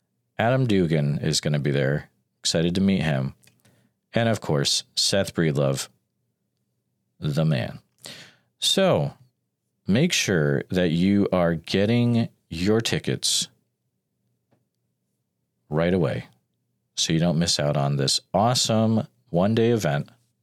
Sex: male